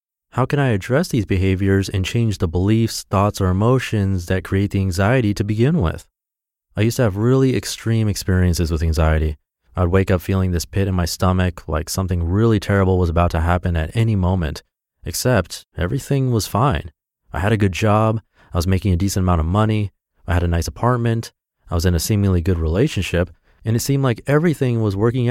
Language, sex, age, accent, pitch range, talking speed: English, male, 30-49, American, 90-115 Hz, 200 wpm